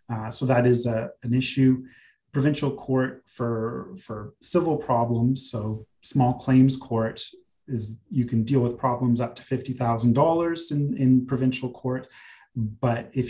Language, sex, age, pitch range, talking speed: English, male, 30-49, 115-130 Hz, 155 wpm